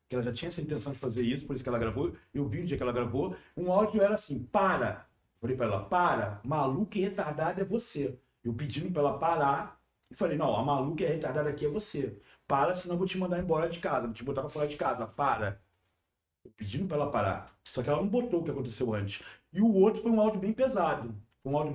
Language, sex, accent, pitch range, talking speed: Portuguese, male, Brazilian, 125-205 Hz, 260 wpm